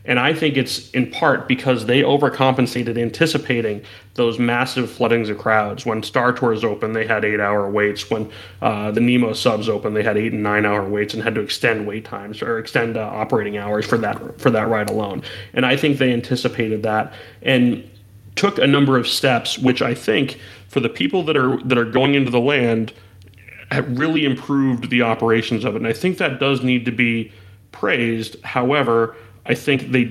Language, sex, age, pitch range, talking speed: English, male, 30-49, 110-130 Hz, 200 wpm